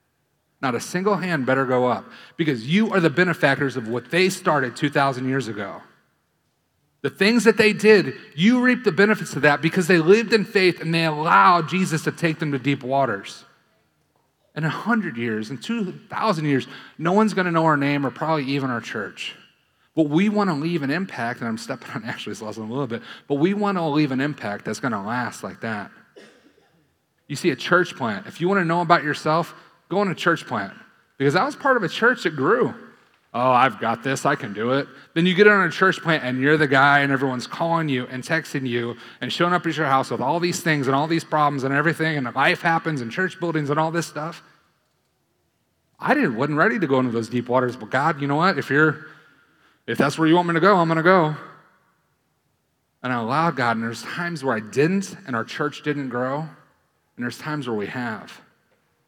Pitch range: 135-175 Hz